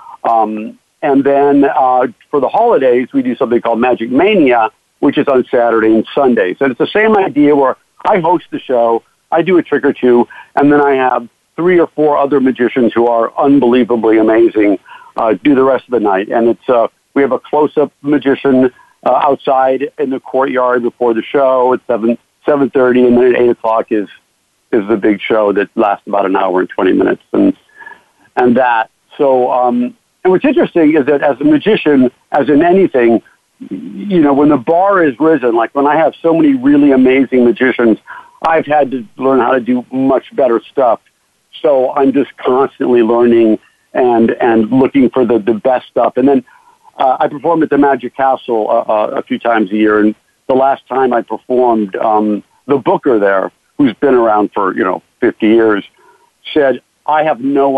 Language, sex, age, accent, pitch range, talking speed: English, male, 60-79, American, 115-145 Hz, 195 wpm